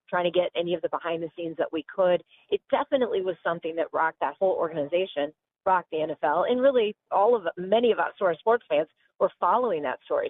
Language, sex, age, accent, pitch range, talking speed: English, female, 40-59, American, 165-220 Hz, 210 wpm